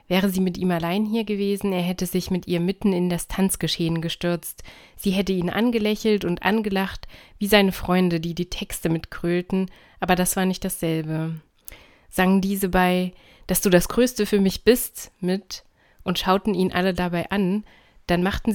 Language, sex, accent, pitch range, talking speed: German, female, German, 170-195 Hz, 175 wpm